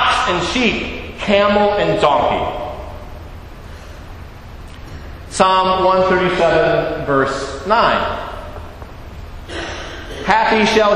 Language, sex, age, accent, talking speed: English, male, 40-59, American, 60 wpm